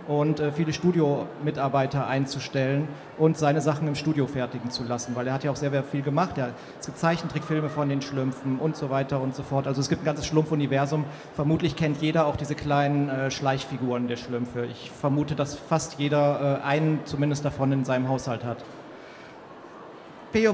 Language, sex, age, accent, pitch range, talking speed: German, male, 40-59, German, 140-165 Hz, 180 wpm